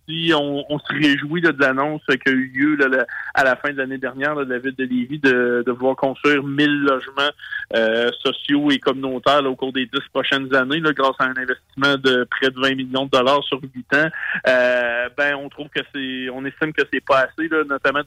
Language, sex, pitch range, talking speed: French, male, 130-145 Hz, 230 wpm